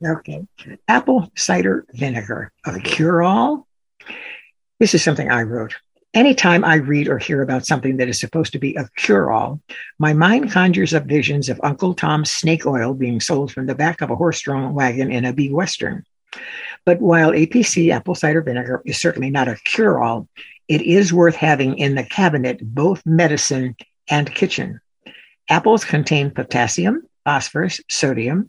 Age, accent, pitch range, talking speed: 60-79, American, 145-180 Hz, 155 wpm